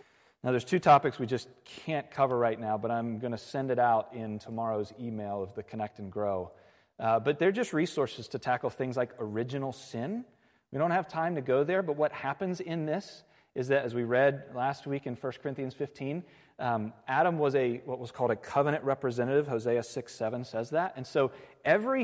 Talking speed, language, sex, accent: 205 wpm, English, male, American